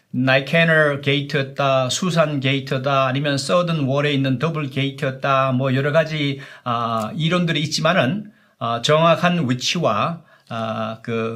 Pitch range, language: 130-170 Hz, Korean